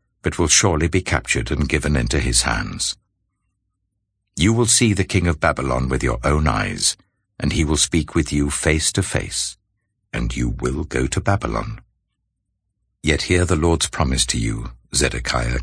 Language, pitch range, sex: English, 75-100 Hz, male